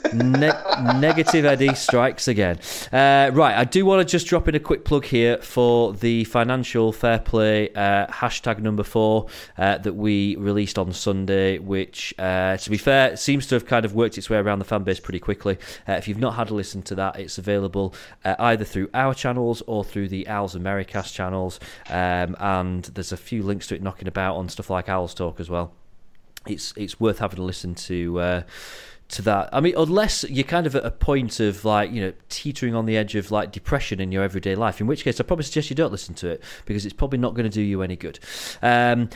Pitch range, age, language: 95-125 Hz, 30-49, English